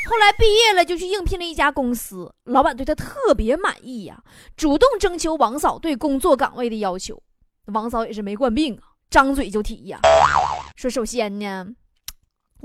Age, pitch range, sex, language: 20-39, 225-320 Hz, female, Chinese